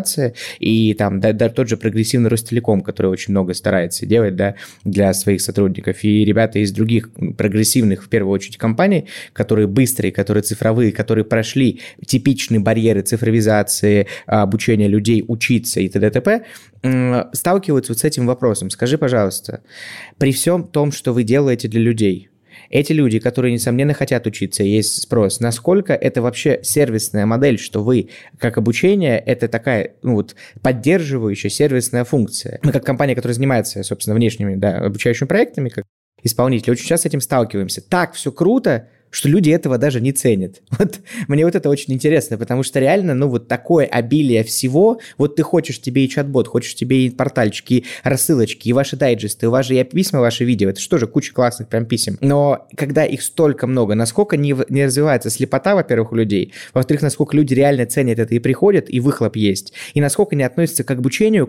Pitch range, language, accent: 110-140 Hz, Russian, native